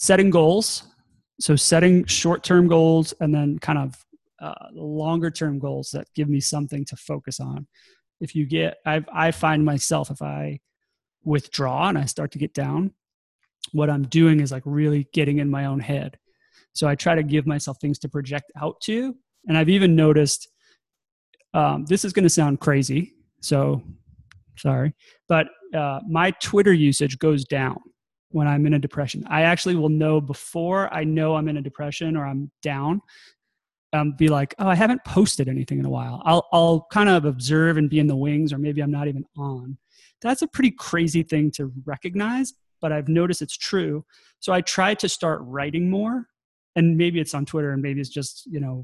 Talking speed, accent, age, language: 185 wpm, American, 30-49, English